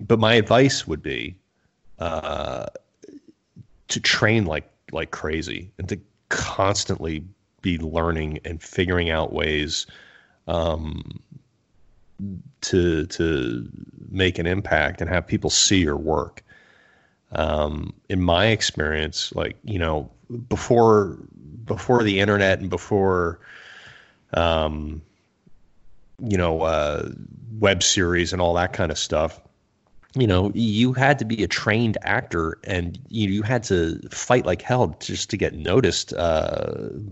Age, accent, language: 30-49, American, English